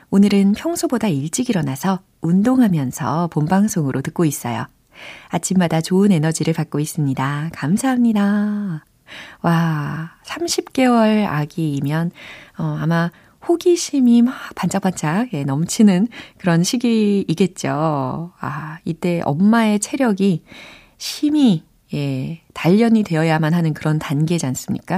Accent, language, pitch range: native, Korean, 155-215 Hz